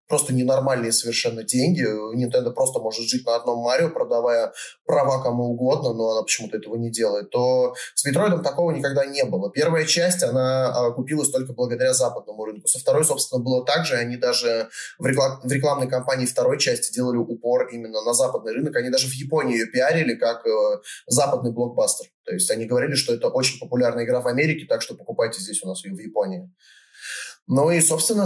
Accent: native